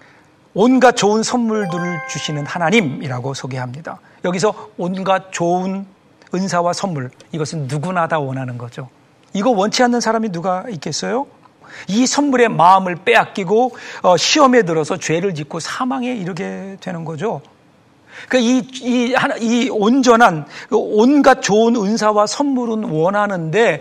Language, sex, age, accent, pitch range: Korean, male, 40-59, native, 160-235 Hz